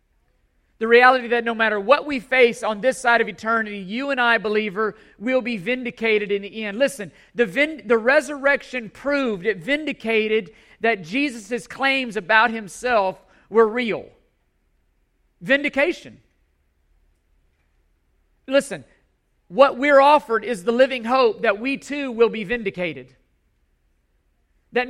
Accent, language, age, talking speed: American, English, 40-59, 130 wpm